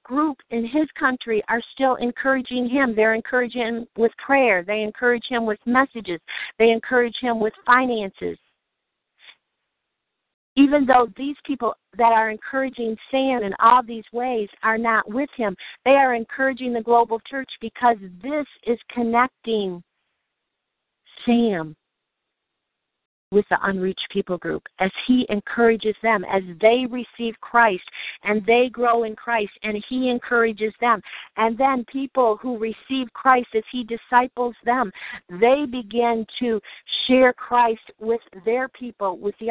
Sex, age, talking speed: female, 50-69, 140 wpm